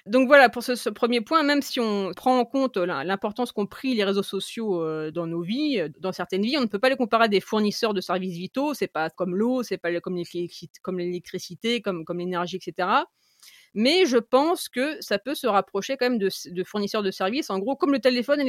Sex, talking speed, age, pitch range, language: female, 240 wpm, 30-49, 185-240 Hz, French